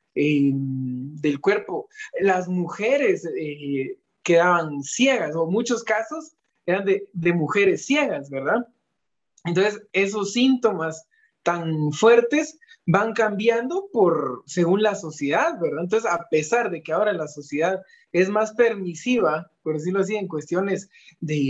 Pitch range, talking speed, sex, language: 165-240 Hz, 125 wpm, male, Spanish